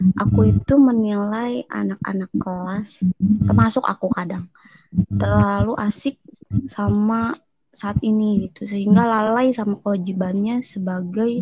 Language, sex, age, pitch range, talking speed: Indonesian, female, 20-39, 190-230 Hz, 100 wpm